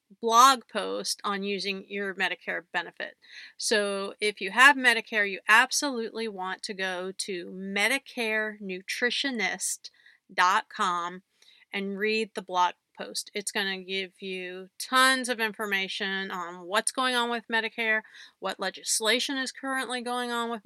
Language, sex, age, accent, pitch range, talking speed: English, female, 40-59, American, 195-230 Hz, 130 wpm